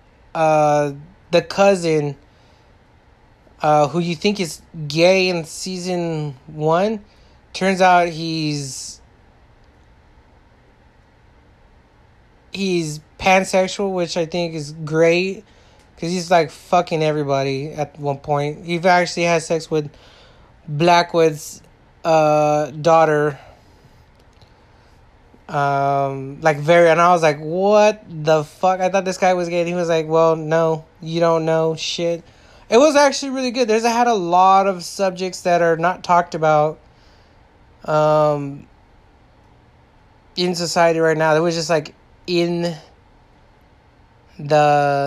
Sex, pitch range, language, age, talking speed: male, 150-180 Hz, English, 20-39, 120 wpm